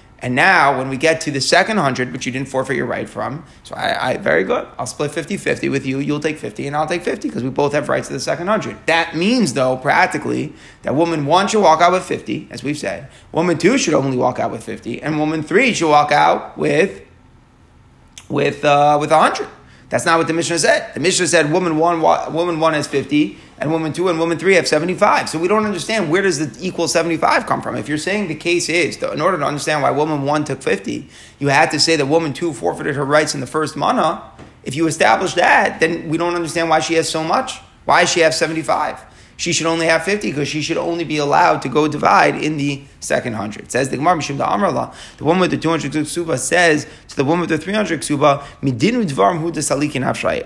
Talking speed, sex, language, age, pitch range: 230 wpm, male, English, 30-49, 145-170 Hz